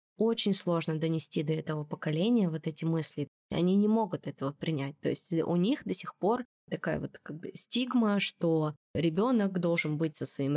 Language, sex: Russian, female